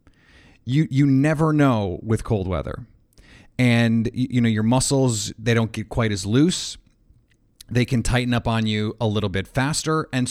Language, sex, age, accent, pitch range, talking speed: English, male, 30-49, American, 115-135 Hz, 170 wpm